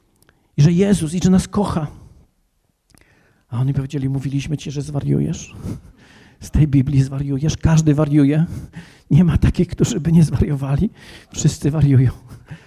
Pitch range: 165-225 Hz